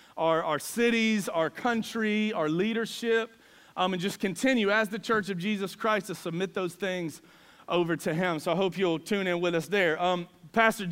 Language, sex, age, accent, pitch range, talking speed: English, male, 30-49, American, 185-225 Hz, 190 wpm